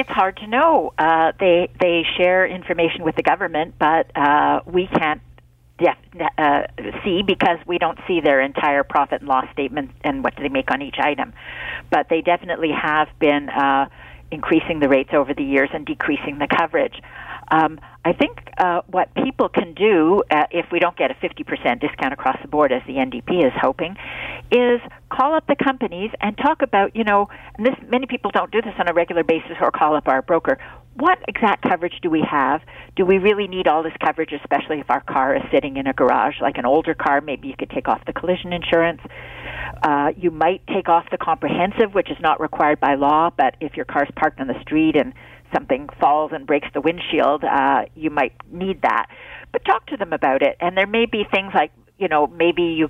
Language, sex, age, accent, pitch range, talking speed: English, female, 50-69, American, 150-200 Hz, 215 wpm